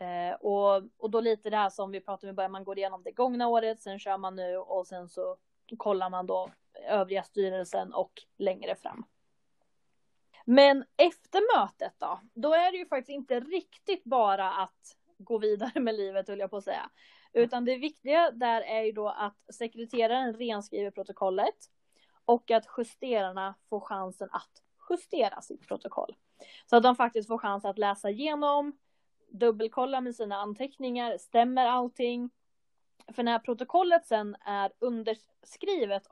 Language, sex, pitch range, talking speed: Swedish, female, 200-260 Hz, 155 wpm